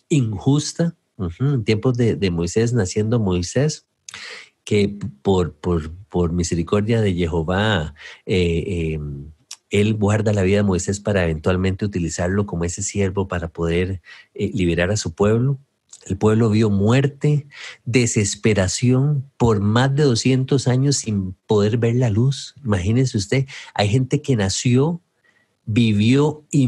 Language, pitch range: English, 95-125 Hz